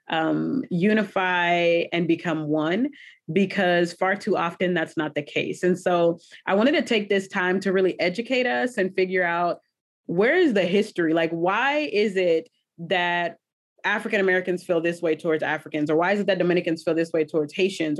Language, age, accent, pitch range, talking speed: English, 30-49, American, 165-200 Hz, 180 wpm